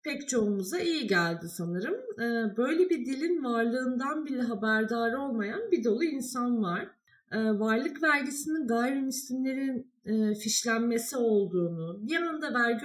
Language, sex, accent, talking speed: Turkish, female, native, 110 wpm